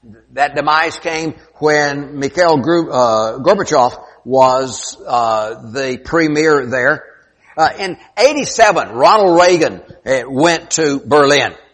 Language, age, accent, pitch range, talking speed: English, 60-79, American, 120-160 Hz, 105 wpm